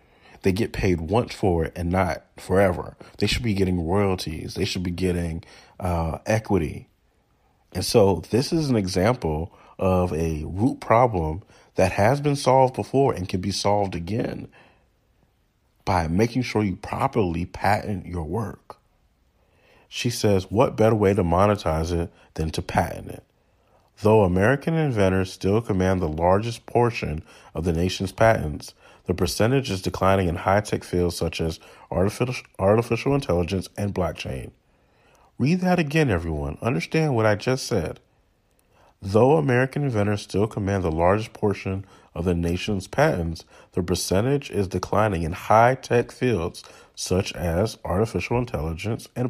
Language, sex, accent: English, male, American